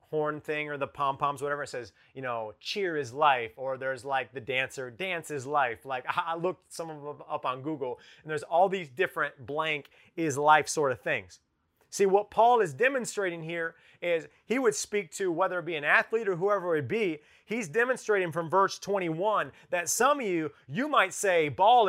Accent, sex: American, male